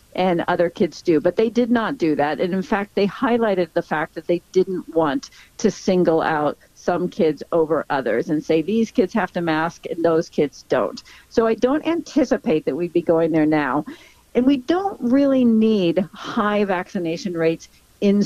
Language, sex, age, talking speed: English, female, 50-69, 190 wpm